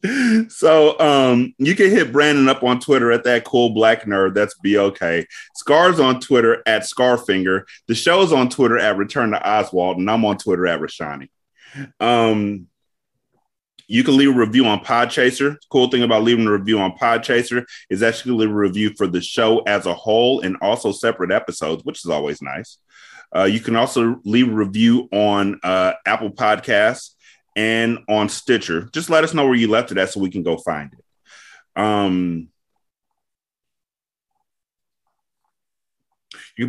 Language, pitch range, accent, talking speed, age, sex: English, 95-125 Hz, American, 165 wpm, 30-49, male